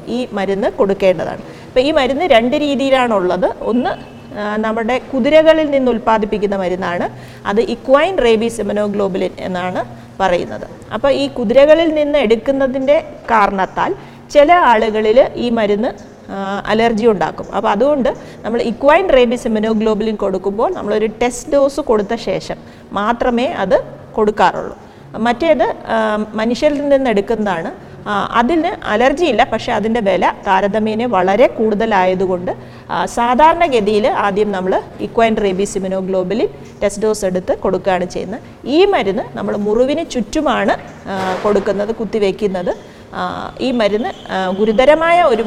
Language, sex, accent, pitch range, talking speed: Malayalam, female, native, 195-265 Hz, 105 wpm